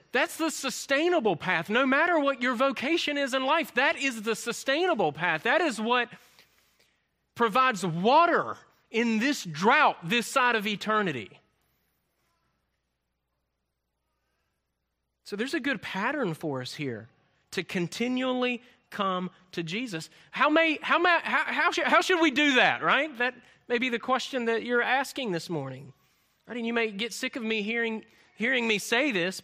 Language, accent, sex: English, American, male